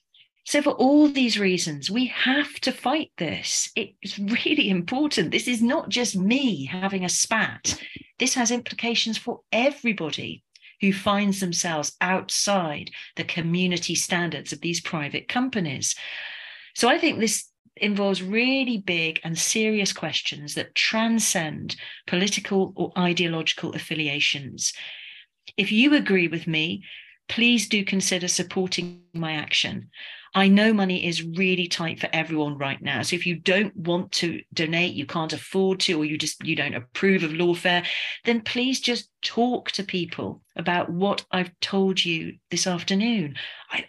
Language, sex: English, female